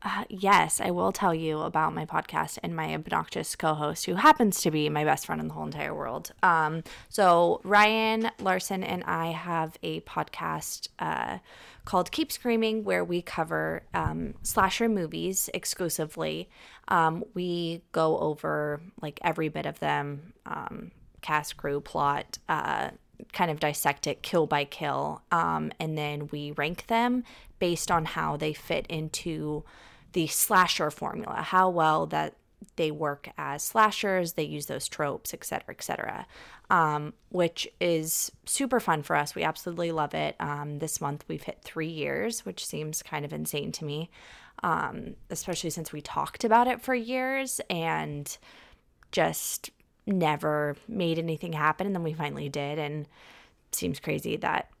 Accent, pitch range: American, 150-185 Hz